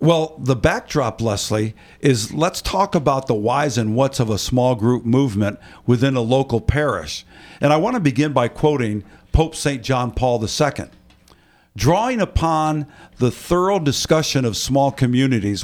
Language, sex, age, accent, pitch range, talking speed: English, male, 50-69, American, 120-160 Hz, 155 wpm